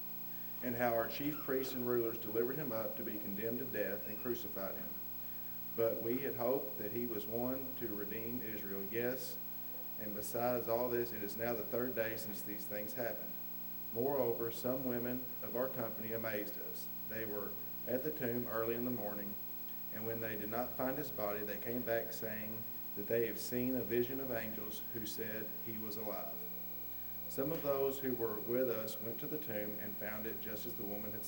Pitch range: 95-120 Hz